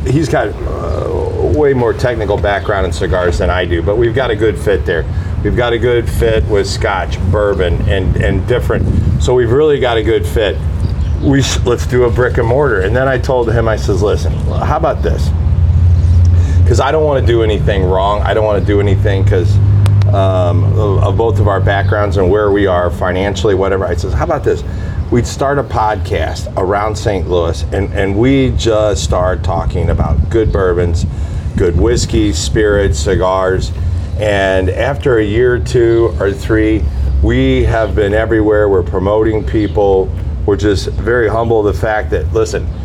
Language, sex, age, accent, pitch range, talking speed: English, male, 40-59, American, 90-110 Hz, 185 wpm